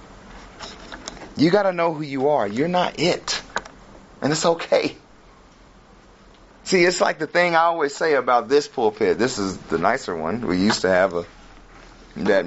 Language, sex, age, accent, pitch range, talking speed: English, male, 30-49, American, 125-175 Hz, 165 wpm